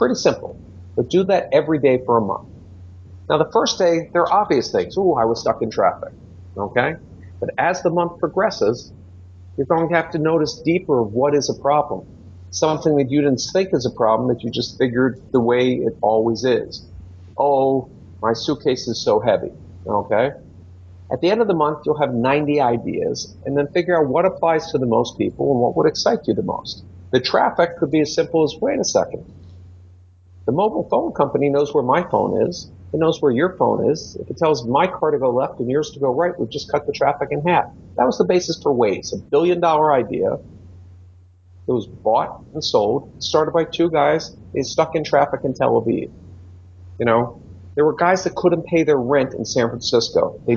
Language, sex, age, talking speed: English, male, 50-69, 210 wpm